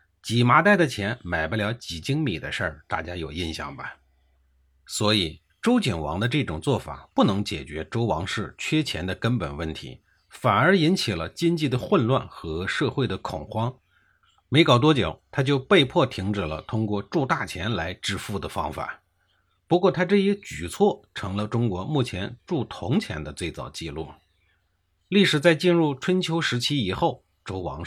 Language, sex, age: Chinese, male, 50-69